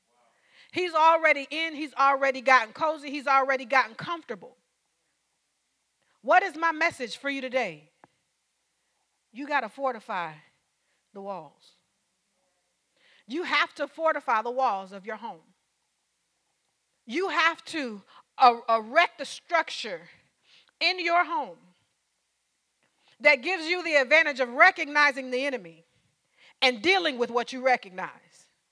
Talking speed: 120 wpm